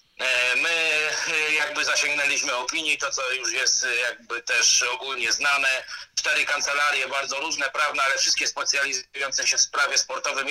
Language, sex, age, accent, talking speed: Polish, male, 40-59, native, 135 wpm